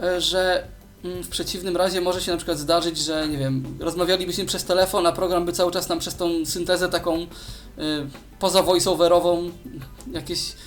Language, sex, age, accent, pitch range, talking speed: Polish, male, 20-39, native, 155-180 Hz, 165 wpm